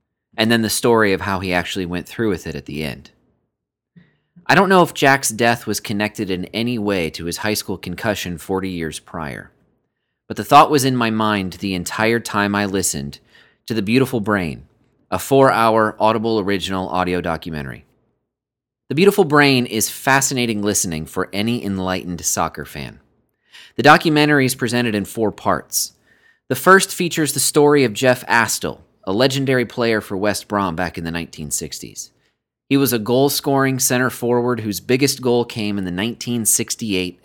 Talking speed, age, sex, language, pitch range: 170 wpm, 30-49, male, English, 95-130 Hz